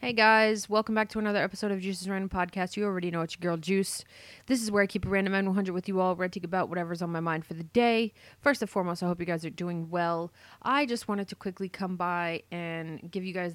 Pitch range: 170-200 Hz